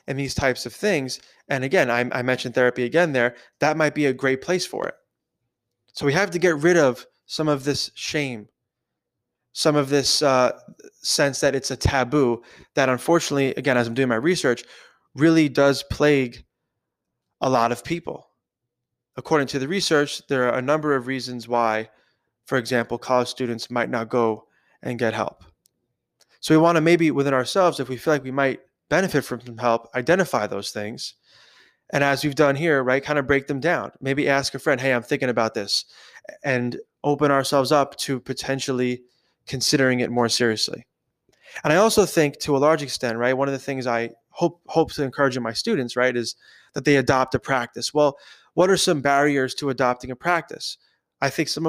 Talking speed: 195 wpm